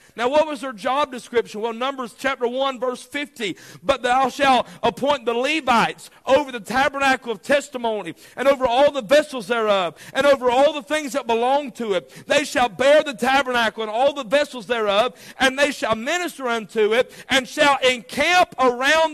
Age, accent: 50-69, American